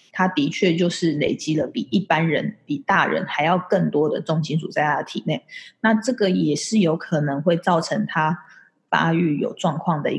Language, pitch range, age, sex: Chinese, 160-195 Hz, 20-39, female